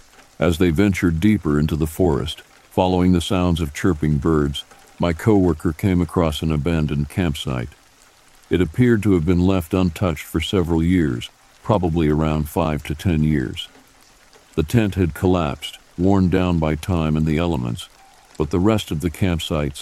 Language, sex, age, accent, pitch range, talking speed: English, male, 60-79, American, 75-95 Hz, 160 wpm